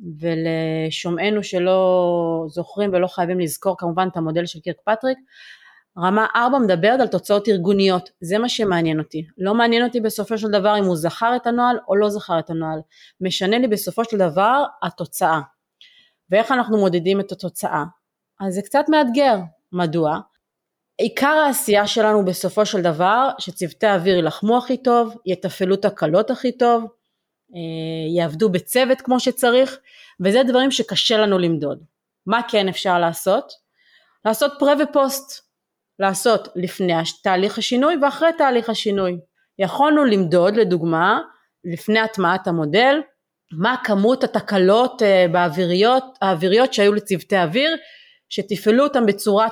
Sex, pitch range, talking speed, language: female, 180-245 Hz, 130 wpm, Hebrew